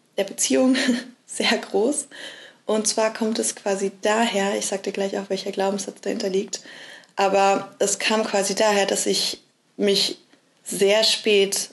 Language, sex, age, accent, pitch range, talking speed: English, female, 20-39, German, 195-235 Hz, 150 wpm